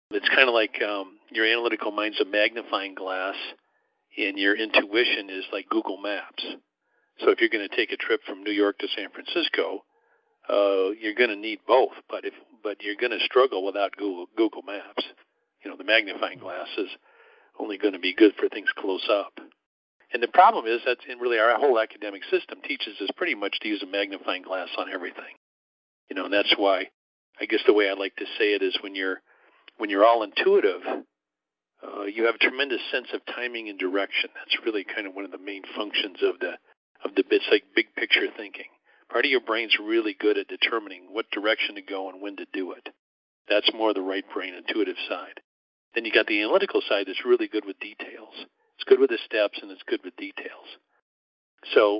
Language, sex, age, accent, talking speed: English, male, 50-69, American, 210 wpm